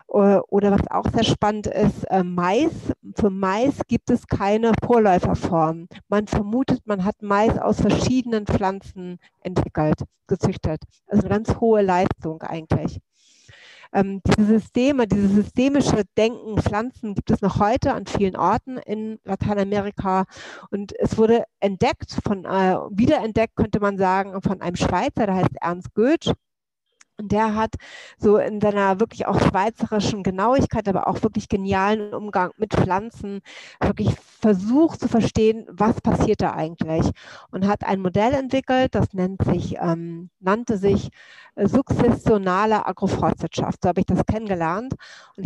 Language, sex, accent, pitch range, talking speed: German, female, German, 190-220 Hz, 140 wpm